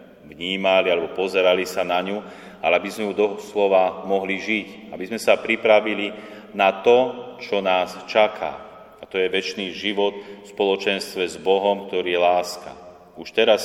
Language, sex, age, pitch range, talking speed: Slovak, male, 30-49, 90-100 Hz, 165 wpm